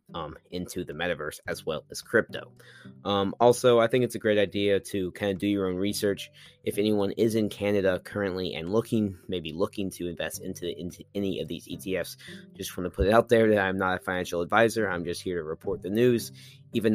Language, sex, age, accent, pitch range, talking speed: English, male, 20-39, American, 90-115 Hz, 220 wpm